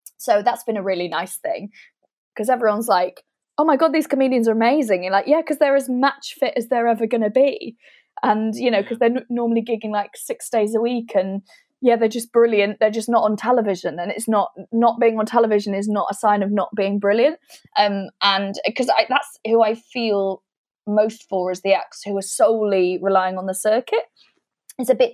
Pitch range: 195-230 Hz